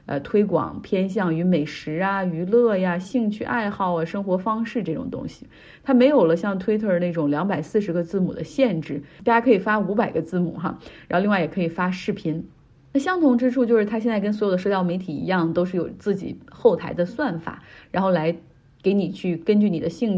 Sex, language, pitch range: female, Chinese, 170-210 Hz